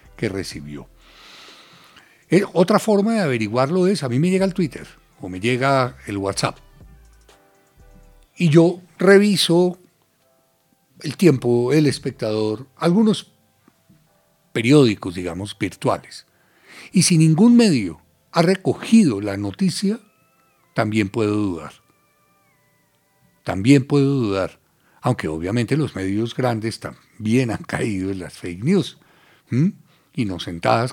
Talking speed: 110 wpm